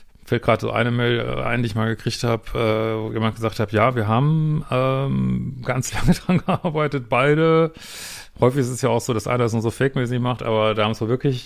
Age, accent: 40-59, German